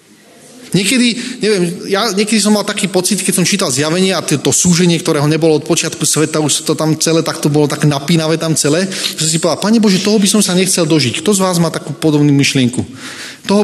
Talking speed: 220 wpm